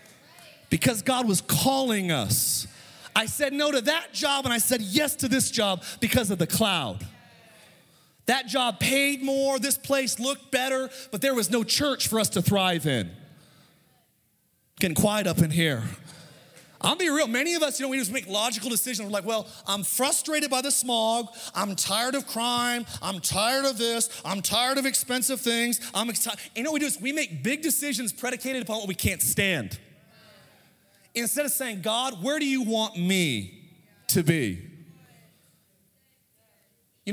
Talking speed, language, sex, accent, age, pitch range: 175 wpm, English, male, American, 30-49, 180-255 Hz